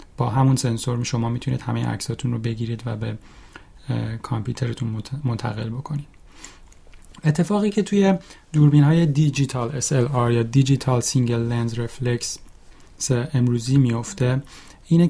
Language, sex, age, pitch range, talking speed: Persian, male, 30-49, 120-140 Hz, 115 wpm